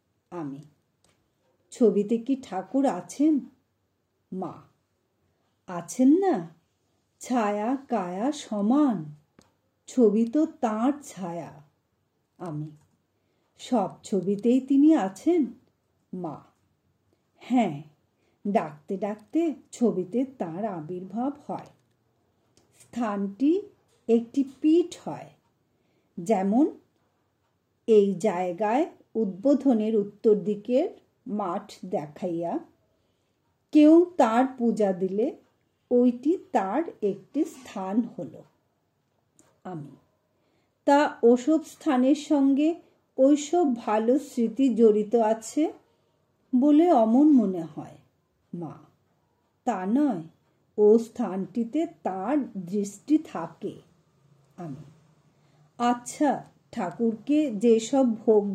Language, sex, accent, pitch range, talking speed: Bengali, female, native, 190-275 Hz, 80 wpm